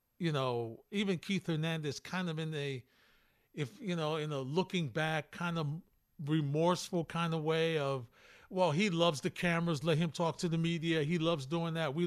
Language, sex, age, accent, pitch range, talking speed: English, male, 50-69, American, 145-175 Hz, 195 wpm